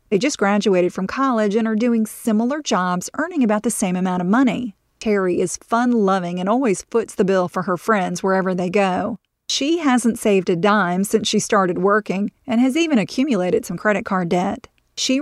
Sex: female